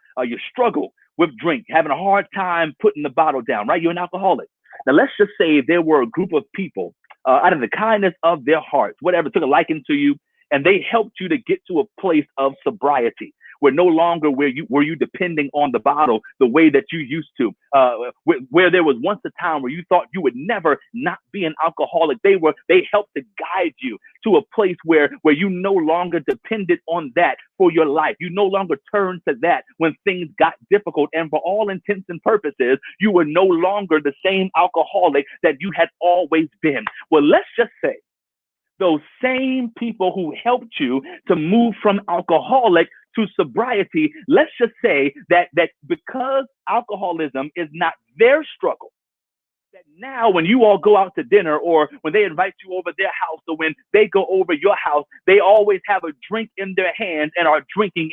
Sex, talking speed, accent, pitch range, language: male, 205 wpm, American, 165-235 Hz, English